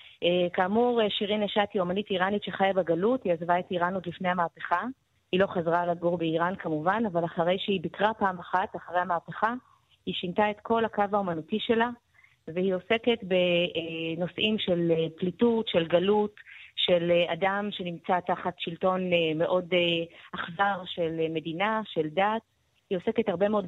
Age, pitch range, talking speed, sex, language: 30-49, 175-210 Hz, 150 wpm, female, Hebrew